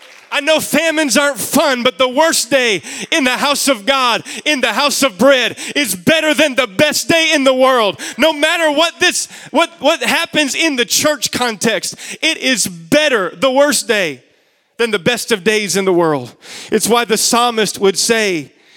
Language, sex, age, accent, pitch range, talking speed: English, male, 30-49, American, 210-275 Hz, 190 wpm